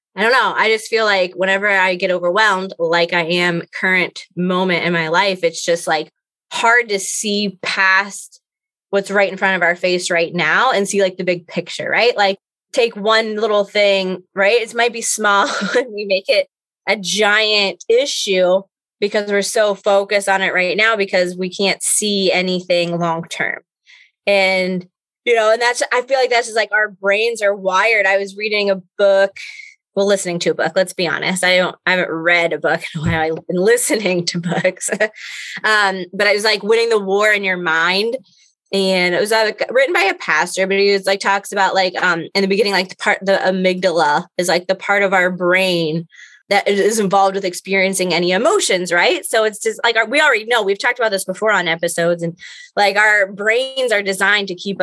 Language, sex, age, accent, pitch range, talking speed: English, female, 20-39, American, 180-210 Hz, 205 wpm